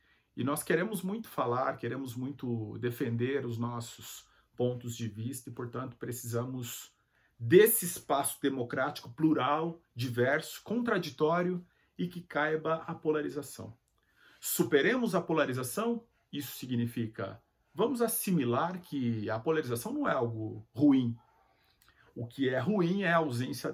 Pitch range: 115-150 Hz